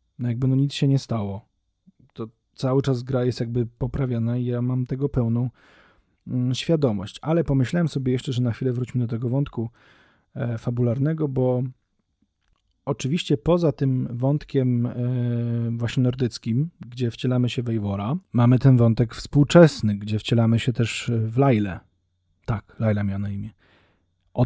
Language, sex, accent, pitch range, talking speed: Polish, male, native, 105-130 Hz, 145 wpm